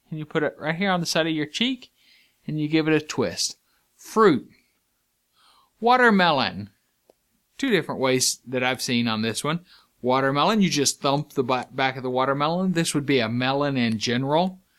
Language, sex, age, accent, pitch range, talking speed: English, male, 40-59, American, 120-175 Hz, 185 wpm